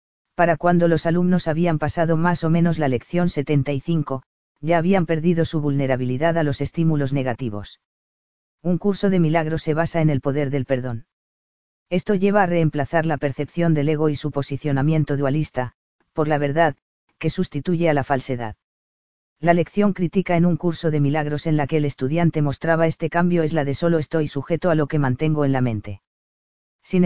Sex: female